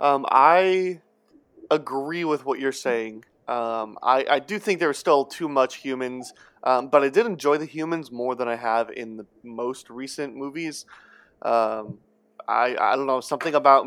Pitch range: 115-145 Hz